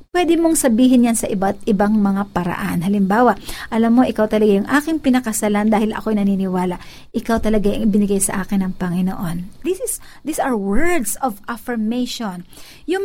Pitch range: 220-285 Hz